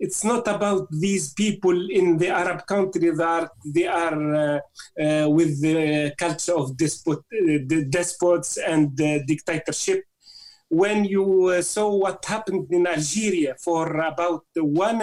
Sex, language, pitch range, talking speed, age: male, English, 160-195 Hz, 150 wpm, 40-59